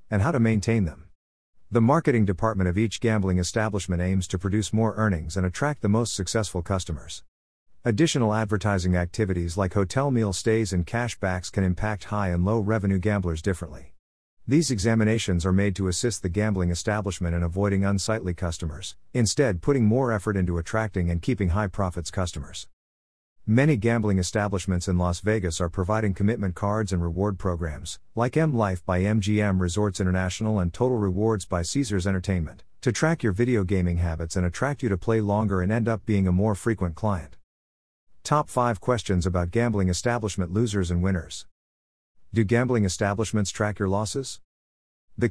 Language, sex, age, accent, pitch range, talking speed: English, male, 50-69, American, 90-110 Hz, 165 wpm